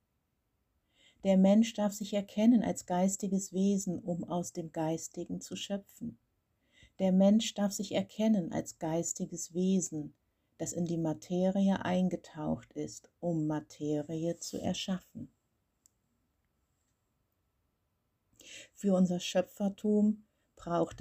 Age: 50-69